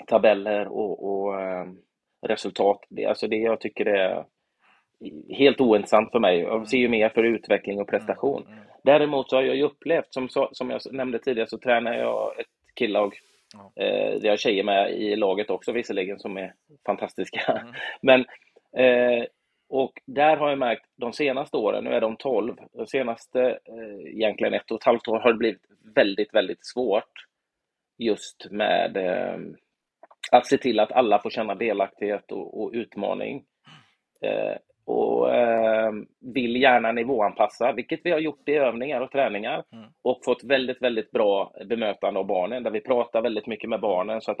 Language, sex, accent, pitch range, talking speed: Swedish, male, native, 110-135 Hz, 170 wpm